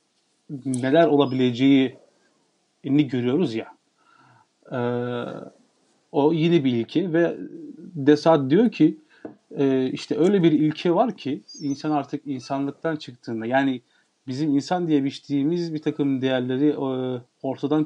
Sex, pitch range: male, 135-170 Hz